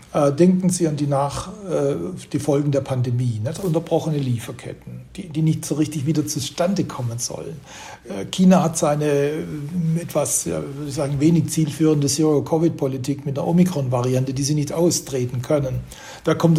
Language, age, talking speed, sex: German, 60-79, 140 wpm, male